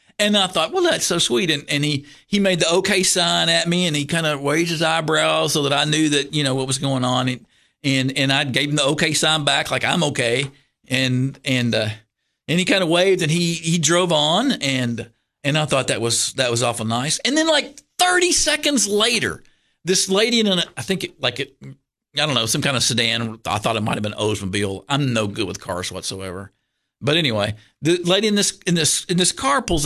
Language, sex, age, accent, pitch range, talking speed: English, male, 50-69, American, 130-190 Hz, 240 wpm